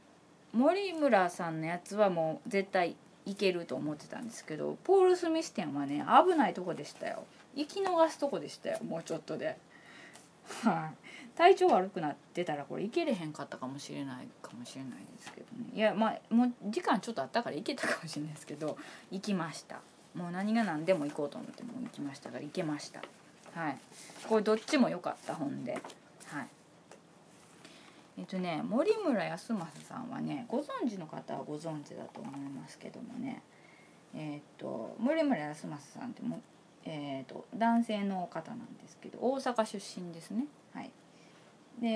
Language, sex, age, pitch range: Japanese, female, 20-39, 165-245 Hz